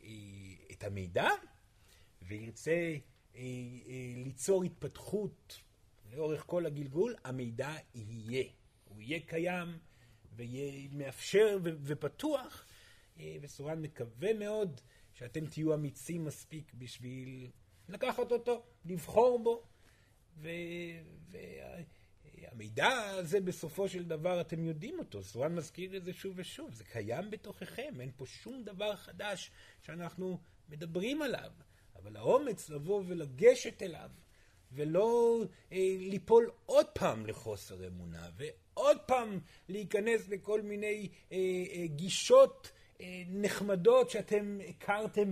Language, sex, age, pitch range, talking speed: Hebrew, male, 40-59, 125-200 Hz, 110 wpm